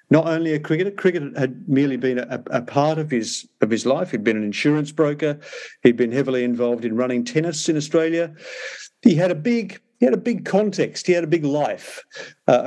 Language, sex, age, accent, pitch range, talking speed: English, male, 50-69, British, 125-170 Hz, 215 wpm